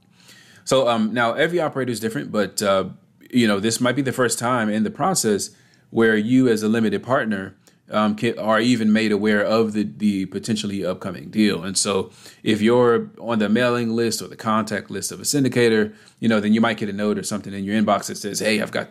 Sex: male